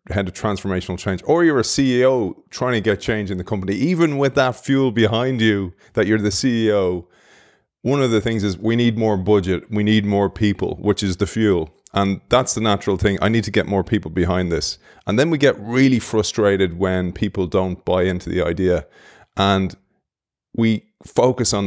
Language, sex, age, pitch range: English, male, 30-49, 95-110 Hz